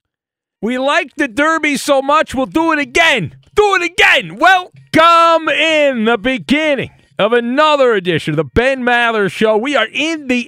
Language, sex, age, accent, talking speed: English, male, 40-59, American, 165 wpm